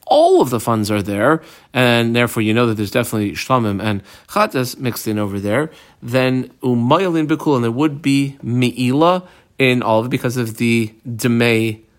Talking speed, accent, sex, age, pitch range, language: 175 wpm, American, male, 40-59, 110-150 Hz, English